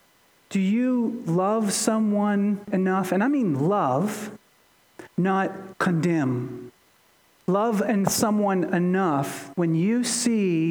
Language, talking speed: English, 100 wpm